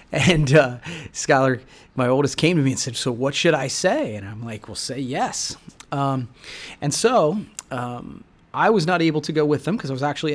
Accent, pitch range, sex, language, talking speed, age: American, 130-155 Hz, male, English, 215 wpm, 30-49